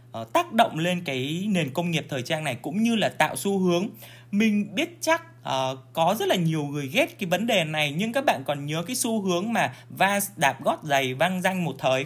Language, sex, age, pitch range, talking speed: Vietnamese, male, 20-39, 135-210 Hz, 235 wpm